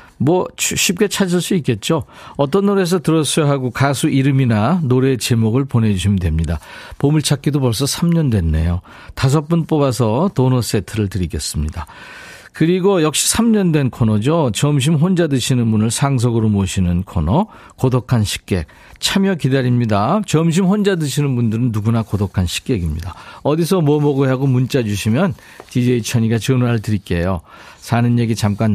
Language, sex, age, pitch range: Korean, male, 40-59, 110-155 Hz